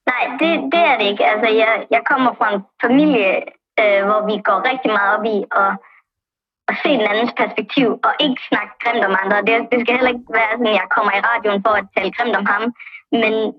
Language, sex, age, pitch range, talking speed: Danish, male, 20-39, 200-250 Hz, 230 wpm